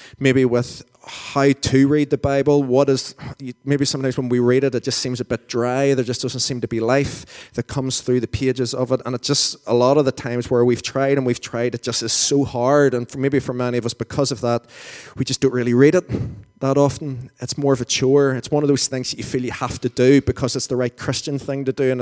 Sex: male